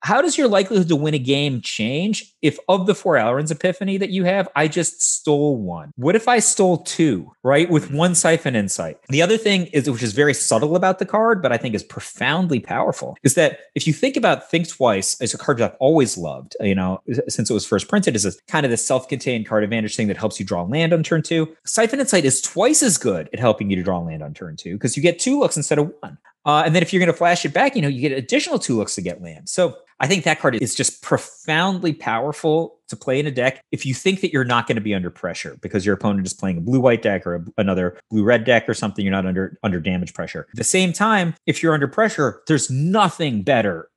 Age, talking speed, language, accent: 30-49, 255 wpm, English, American